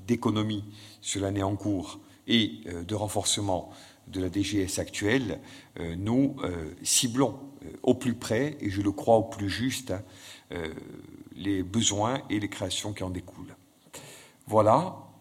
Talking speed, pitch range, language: 130 wpm, 100-125 Hz, French